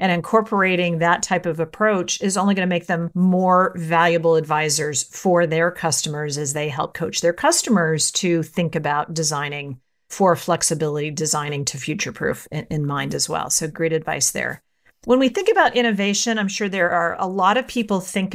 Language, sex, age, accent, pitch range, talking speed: English, female, 40-59, American, 165-210 Hz, 180 wpm